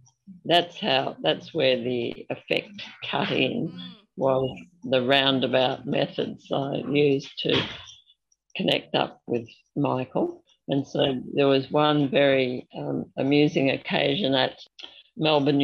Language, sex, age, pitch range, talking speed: English, female, 50-69, 135-160 Hz, 115 wpm